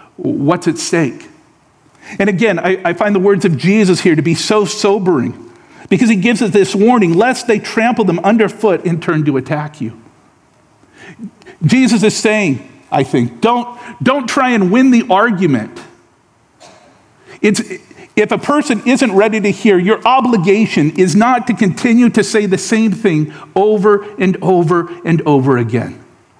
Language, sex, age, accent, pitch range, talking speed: English, male, 50-69, American, 150-220 Hz, 160 wpm